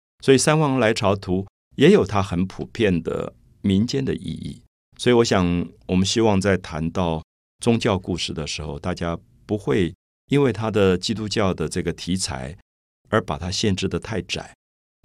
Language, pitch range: Chinese, 80-100 Hz